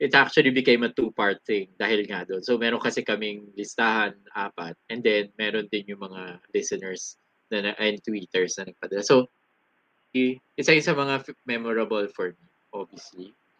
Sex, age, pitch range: male, 20-39, 105-155 Hz